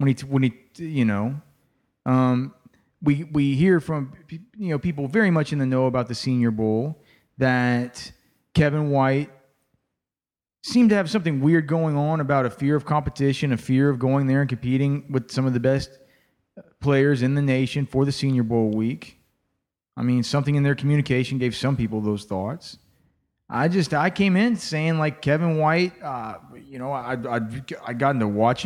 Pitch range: 125-150 Hz